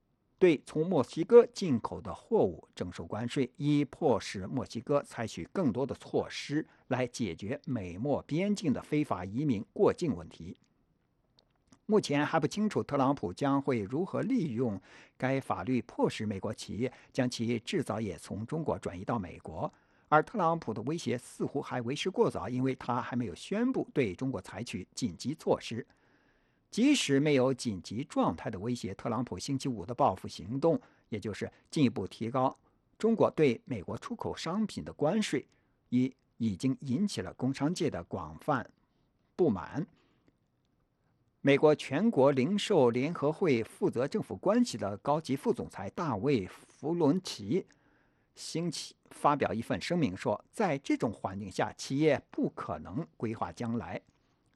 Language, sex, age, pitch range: English, male, 60-79, 115-155 Hz